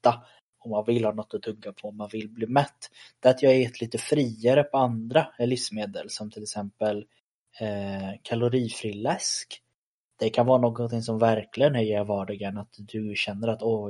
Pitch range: 105-125 Hz